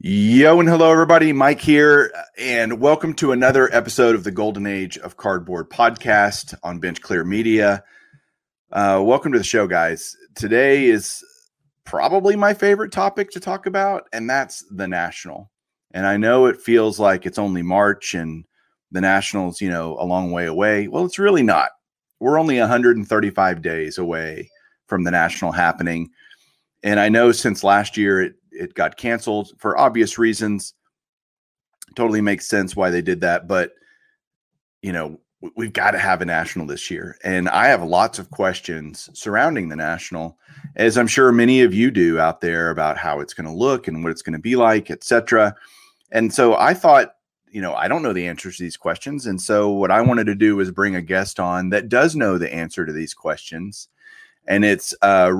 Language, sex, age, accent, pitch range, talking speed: English, male, 30-49, American, 95-135 Hz, 185 wpm